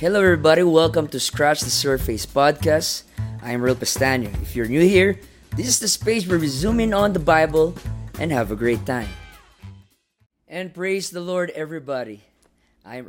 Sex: female